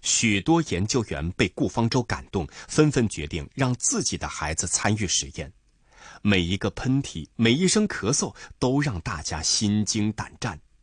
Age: 30-49